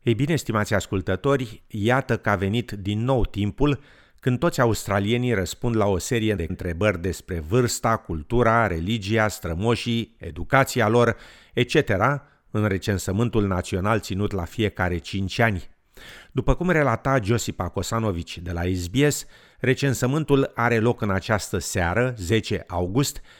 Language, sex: Romanian, male